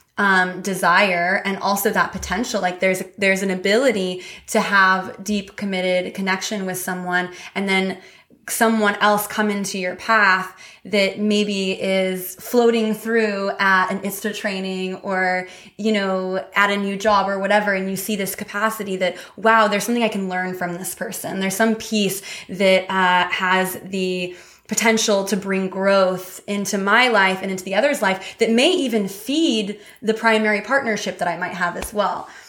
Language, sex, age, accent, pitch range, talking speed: English, female, 20-39, American, 185-210 Hz, 170 wpm